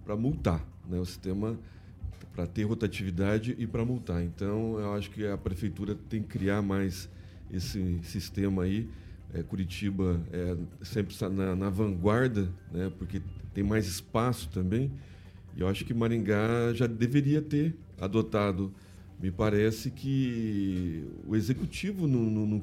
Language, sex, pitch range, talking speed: Portuguese, male, 95-125 Hz, 140 wpm